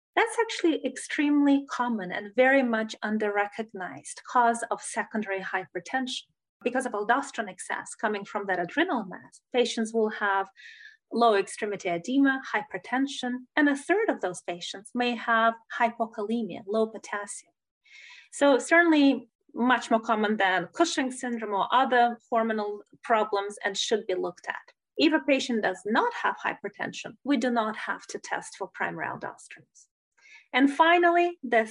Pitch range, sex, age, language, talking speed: 215-280 Hz, female, 30-49, English, 140 wpm